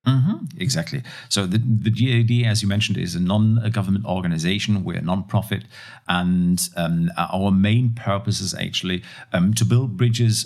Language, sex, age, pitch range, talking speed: English, male, 50-69, 90-110 Hz, 155 wpm